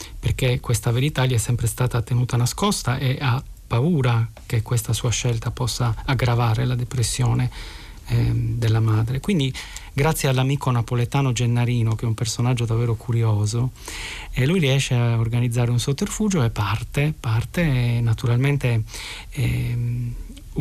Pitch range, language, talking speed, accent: 120-145 Hz, Italian, 135 wpm, native